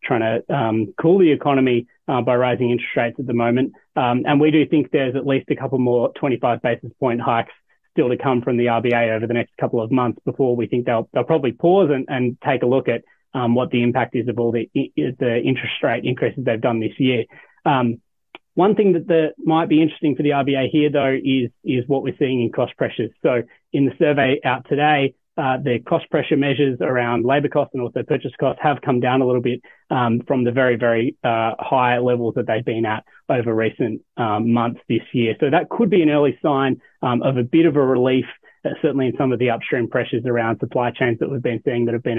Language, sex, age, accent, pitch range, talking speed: English, male, 30-49, Australian, 120-140 Hz, 235 wpm